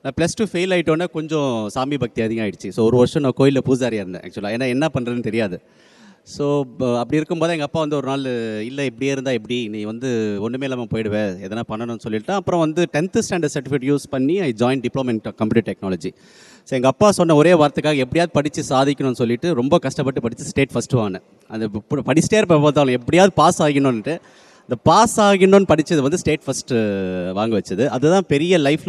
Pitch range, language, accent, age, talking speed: 120-160 Hz, Tamil, native, 30-49, 185 wpm